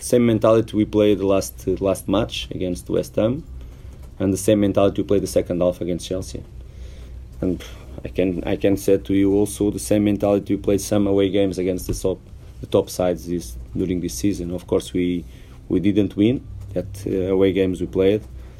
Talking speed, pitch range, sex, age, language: 200 wpm, 85-100 Hz, male, 30-49, English